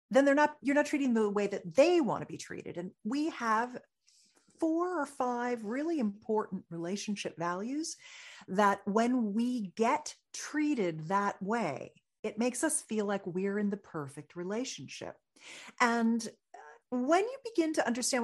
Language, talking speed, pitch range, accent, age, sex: English, 160 wpm, 180-260 Hz, American, 50-69, female